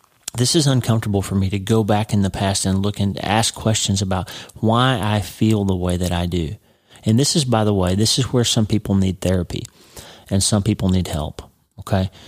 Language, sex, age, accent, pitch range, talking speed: English, male, 40-59, American, 95-120 Hz, 215 wpm